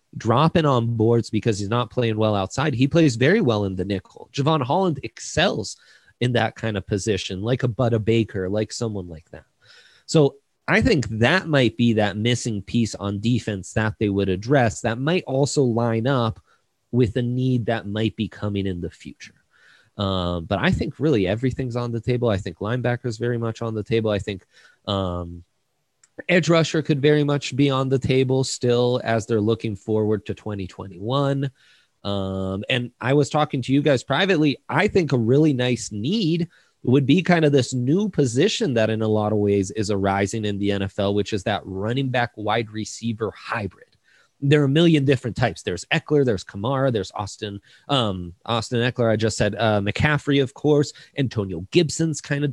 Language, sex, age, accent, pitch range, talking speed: English, male, 20-39, American, 105-140 Hz, 190 wpm